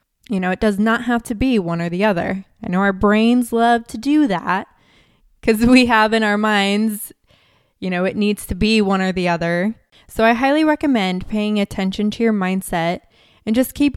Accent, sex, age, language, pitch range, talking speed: American, female, 20-39, English, 190-230 Hz, 205 wpm